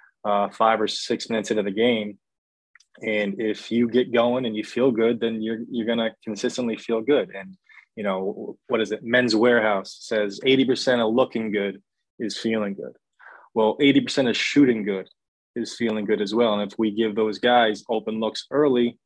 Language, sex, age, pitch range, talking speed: English, male, 20-39, 105-115 Hz, 195 wpm